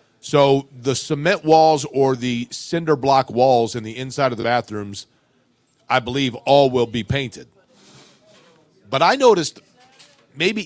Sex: male